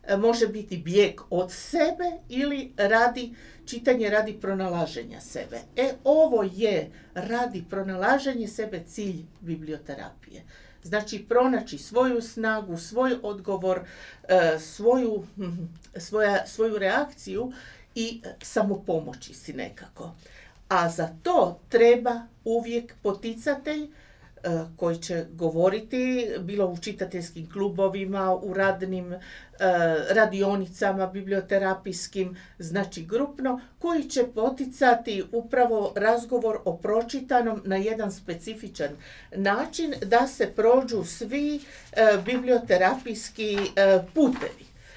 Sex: female